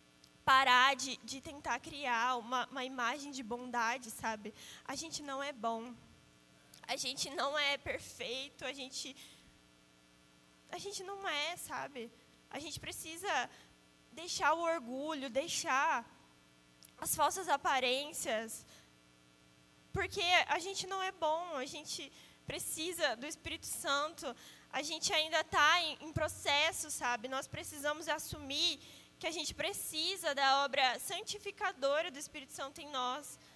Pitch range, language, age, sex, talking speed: 240-320 Hz, Portuguese, 10-29, female, 125 wpm